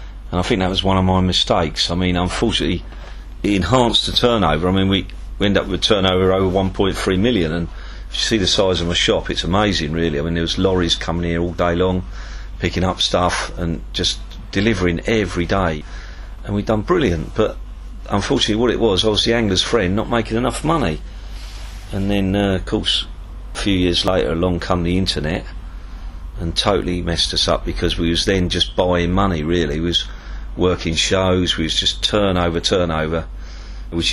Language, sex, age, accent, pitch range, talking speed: English, male, 40-59, British, 85-100 Hz, 195 wpm